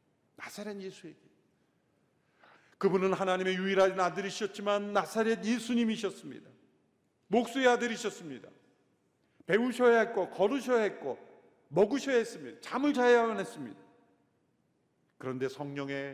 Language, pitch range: Korean, 135-195 Hz